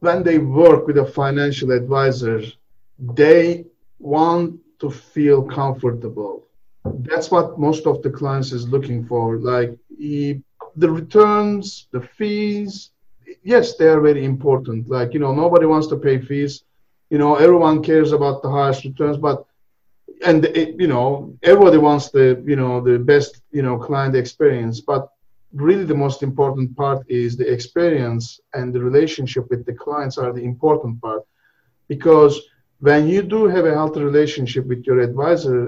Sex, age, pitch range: male, 50-69, 125-155 Hz